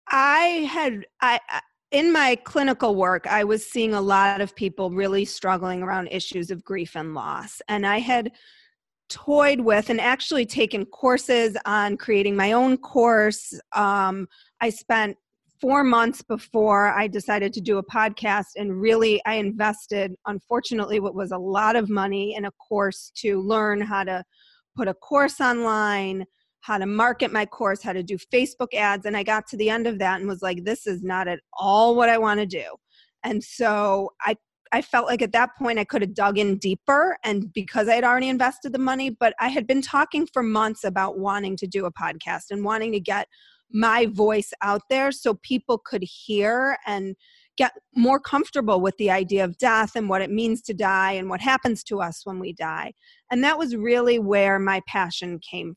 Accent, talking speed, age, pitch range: American, 195 wpm, 30-49, 195-245 Hz